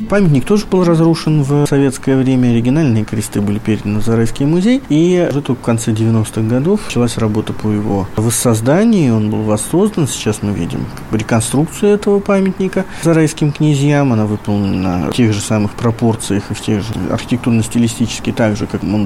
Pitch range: 110-155 Hz